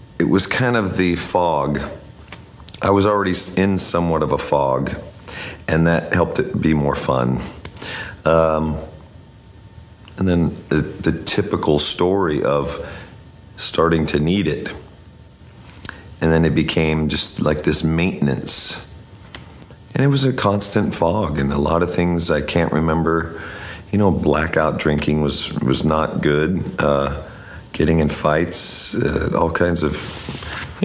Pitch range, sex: 75-95 Hz, male